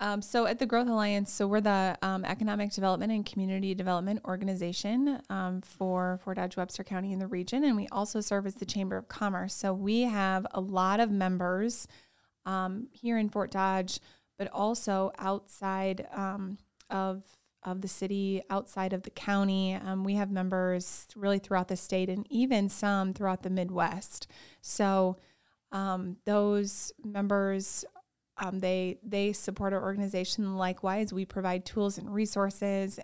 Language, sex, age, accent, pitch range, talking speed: English, female, 20-39, American, 185-205 Hz, 160 wpm